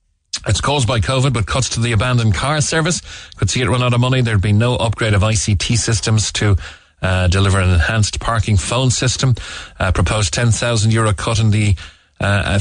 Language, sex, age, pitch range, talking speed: English, male, 30-49, 90-120 Hz, 190 wpm